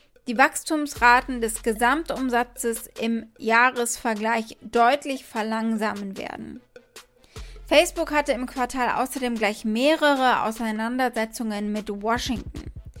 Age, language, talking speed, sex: 20-39, German, 90 wpm, female